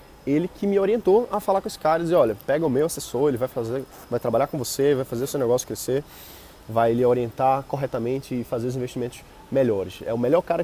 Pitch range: 120-150 Hz